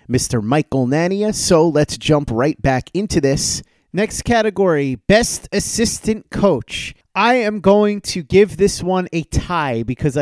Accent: American